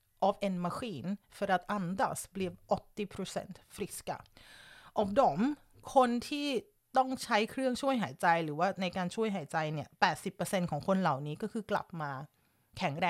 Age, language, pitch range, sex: 30-49, Thai, 175-255 Hz, female